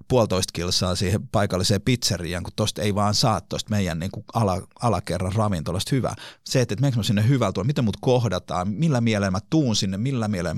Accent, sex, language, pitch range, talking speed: native, male, Finnish, 95-125 Hz, 180 wpm